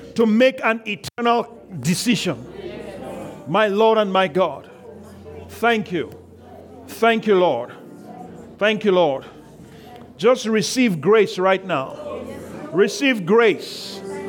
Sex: male